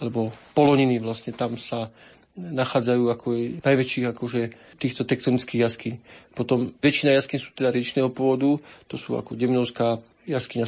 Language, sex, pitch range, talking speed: Slovak, male, 120-130 Hz, 140 wpm